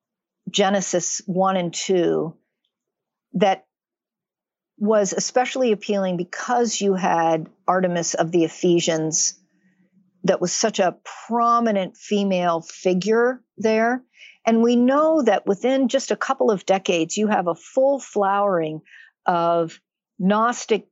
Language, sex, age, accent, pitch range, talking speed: English, female, 50-69, American, 180-240 Hz, 115 wpm